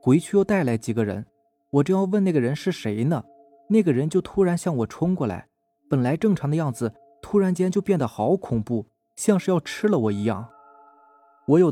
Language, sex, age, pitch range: Chinese, male, 20-39, 115-160 Hz